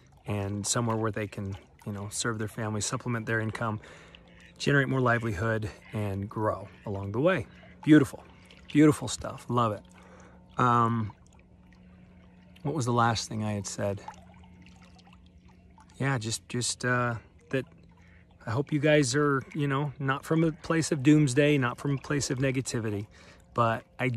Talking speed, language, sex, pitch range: 150 wpm, English, male, 95-135 Hz